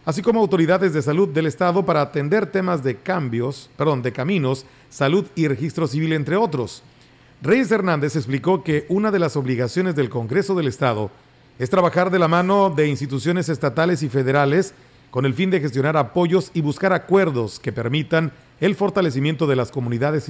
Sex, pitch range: male, 135-175 Hz